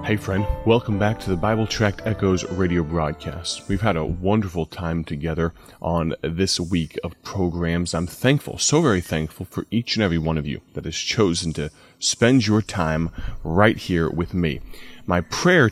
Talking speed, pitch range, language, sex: 180 wpm, 85-115 Hz, English, male